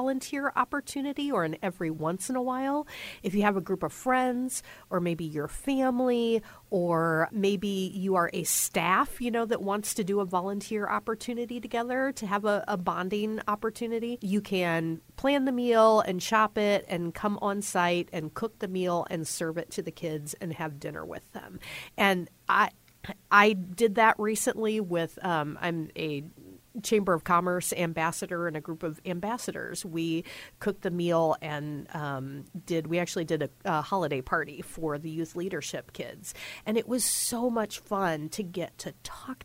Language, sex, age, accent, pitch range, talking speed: English, female, 40-59, American, 165-220 Hz, 180 wpm